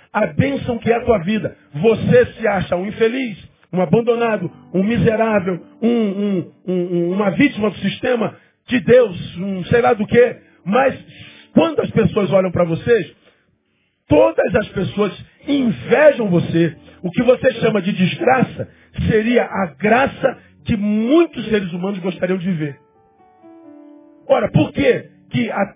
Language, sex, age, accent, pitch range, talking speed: Portuguese, male, 50-69, Brazilian, 160-235 Hz, 135 wpm